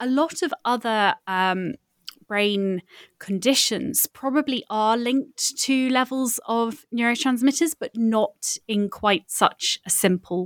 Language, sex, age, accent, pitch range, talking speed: English, female, 20-39, British, 195-250 Hz, 120 wpm